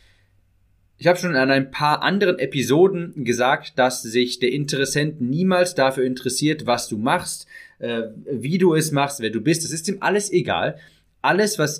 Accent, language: German, German